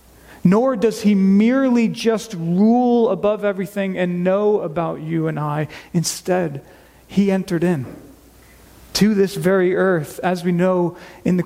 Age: 40-59